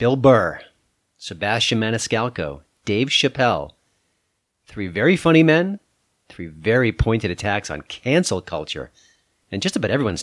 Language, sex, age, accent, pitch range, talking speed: English, male, 40-59, American, 100-140 Hz, 125 wpm